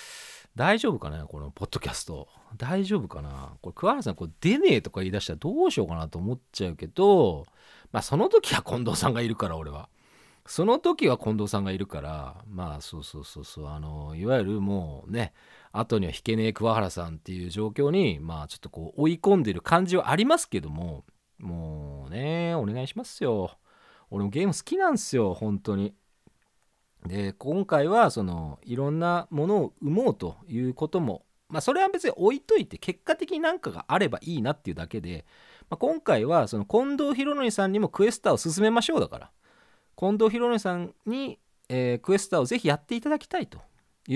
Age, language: 40-59, Japanese